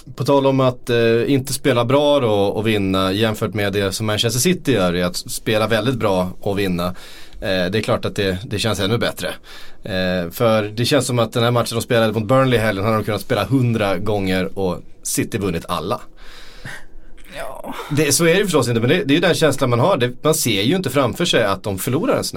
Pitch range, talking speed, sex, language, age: 100-130 Hz, 235 wpm, male, Swedish, 30-49